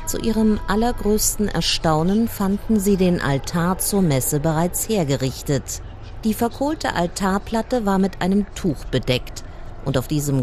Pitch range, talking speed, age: 130-200 Hz, 130 wpm, 50-69